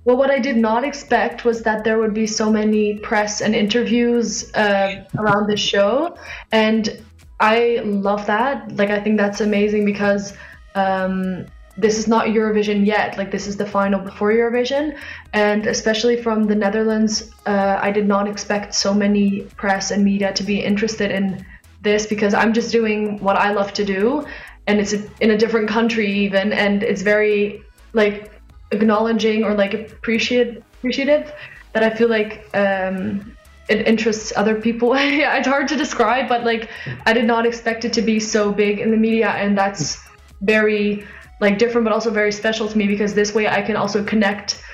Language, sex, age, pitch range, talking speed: English, female, 20-39, 205-225 Hz, 180 wpm